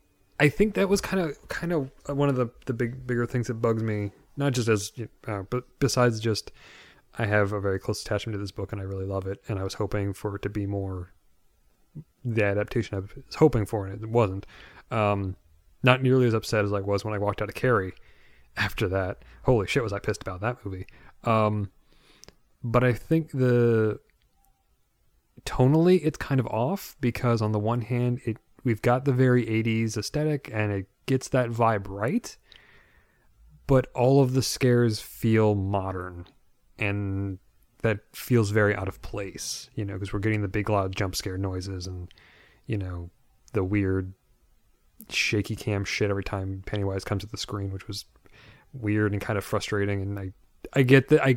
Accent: American